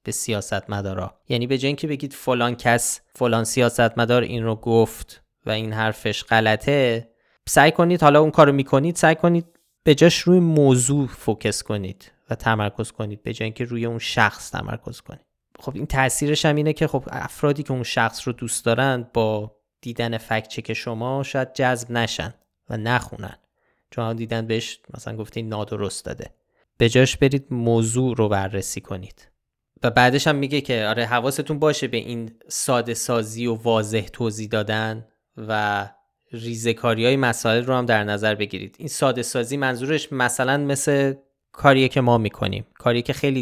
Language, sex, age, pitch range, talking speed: Persian, male, 20-39, 110-135 Hz, 165 wpm